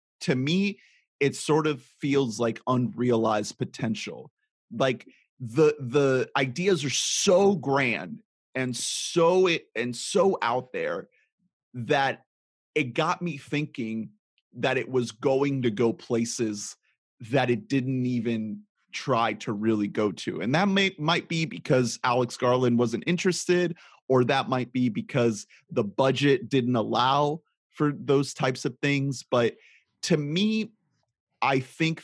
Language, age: English, 30-49